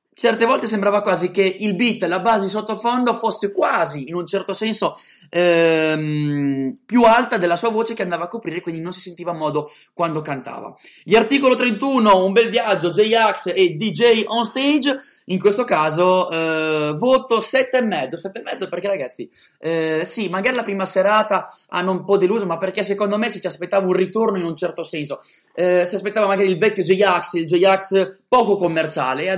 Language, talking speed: Italian, 190 wpm